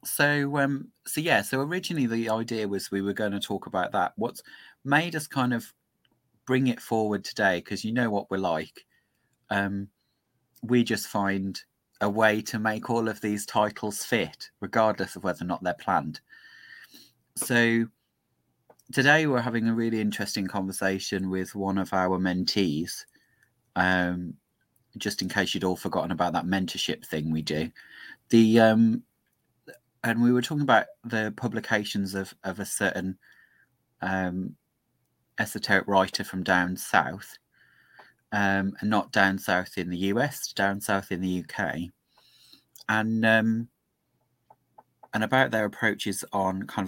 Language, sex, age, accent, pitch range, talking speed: English, male, 30-49, British, 95-115 Hz, 150 wpm